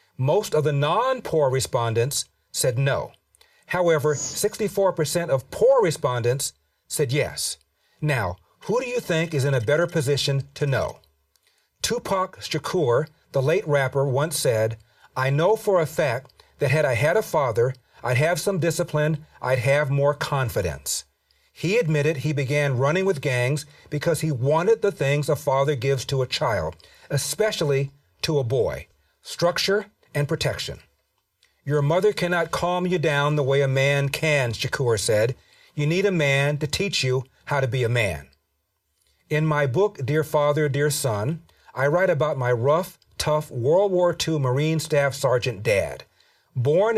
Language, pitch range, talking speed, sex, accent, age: English, 130-160 Hz, 155 wpm, male, American, 50-69